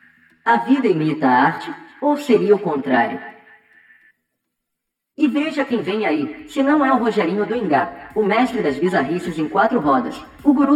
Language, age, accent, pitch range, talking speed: Portuguese, 10-29, Brazilian, 155-255 Hz, 165 wpm